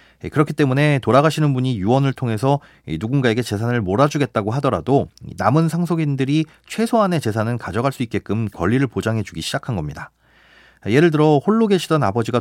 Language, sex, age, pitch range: Korean, male, 30-49, 105-155 Hz